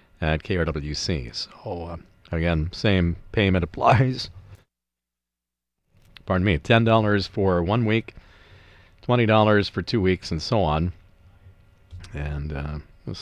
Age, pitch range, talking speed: 40-59, 90-115 Hz, 115 wpm